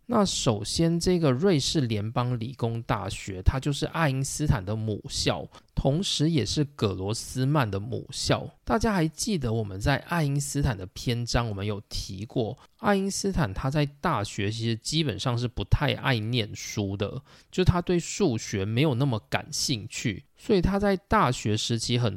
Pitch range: 110-150 Hz